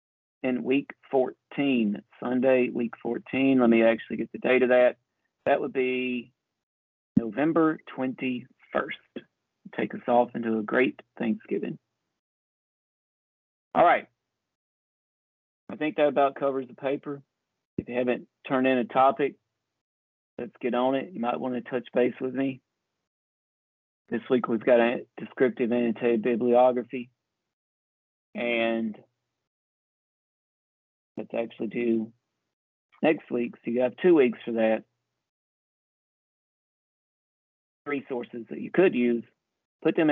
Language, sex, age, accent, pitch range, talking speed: English, male, 40-59, American, 115-130 Hz, 125 wpm